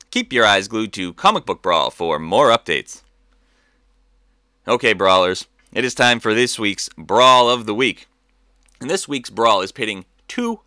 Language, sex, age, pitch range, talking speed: English, male, 30-49, 110-155 Hz, 170 wpm